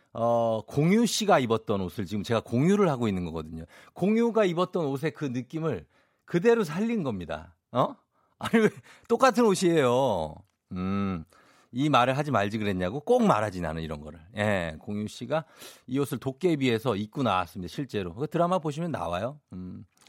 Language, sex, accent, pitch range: Korean, male, native, 95-150 Hz